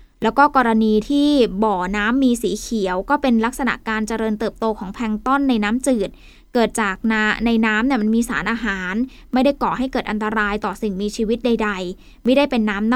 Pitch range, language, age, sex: 220-275 Hz, Thai, 10-29, female